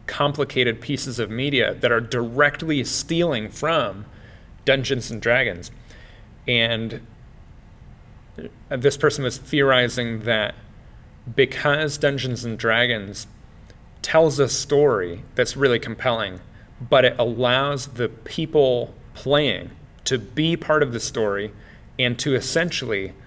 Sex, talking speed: male, 110 wpm